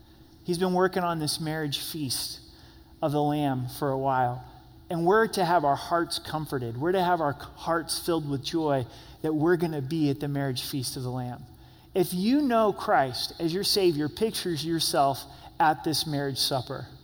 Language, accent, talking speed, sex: English, American, 185 wpm, male